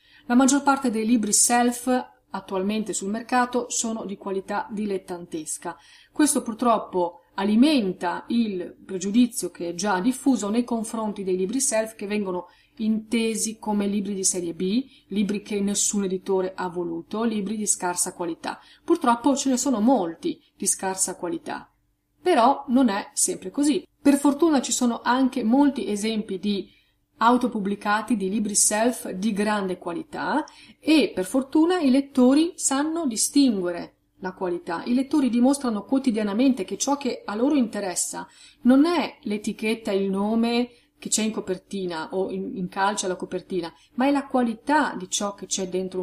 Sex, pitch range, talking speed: female, 190-260 Hz, 150 wpm